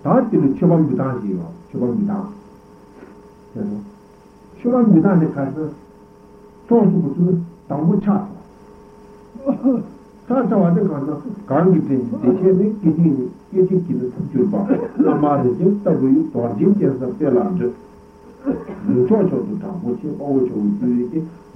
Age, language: 60-79, Italian